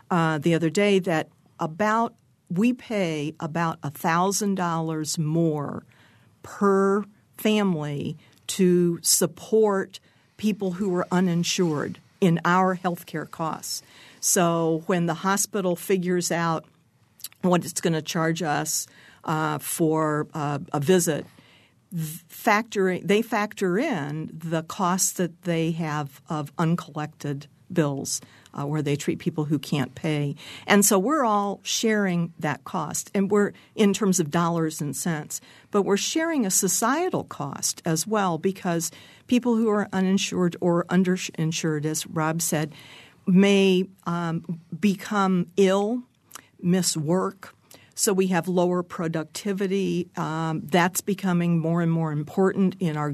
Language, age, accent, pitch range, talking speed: English, 50-69, American, 155-190 Hz, 130 wpm